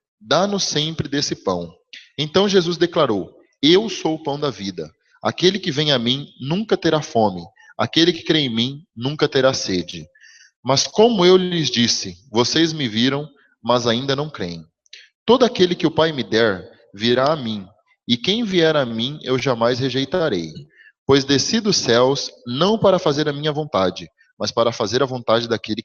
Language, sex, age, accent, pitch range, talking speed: English, male, 20-39, Brazilian, 120-175 Hz, 175 wpm